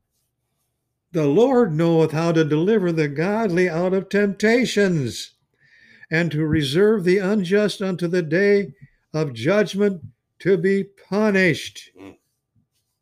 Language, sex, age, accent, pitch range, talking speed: English, male, 60-79, American, 120-175 Hz, 110 wpm